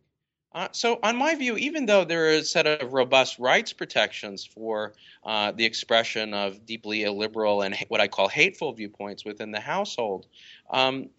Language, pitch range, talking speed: English, 105-155 Hz, 170 wpm